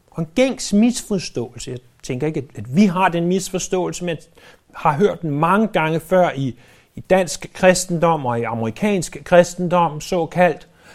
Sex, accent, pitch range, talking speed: male, native, 140-195 Hz, 140 wpm